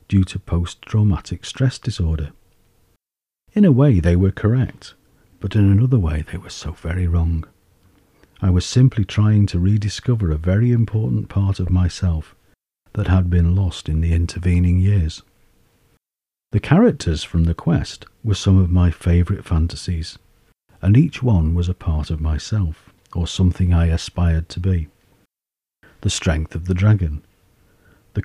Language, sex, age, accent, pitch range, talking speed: English, male, 50-69, British, 85-105 Hz, 150 wpm